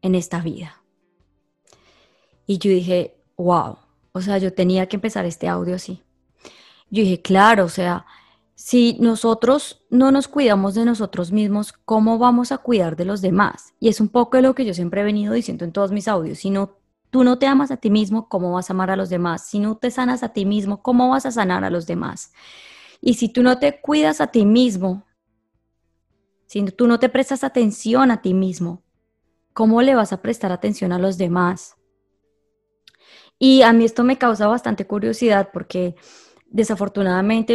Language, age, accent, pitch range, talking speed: Spanish, 20-39, Colombian, 185-235 Hz, 190 wpm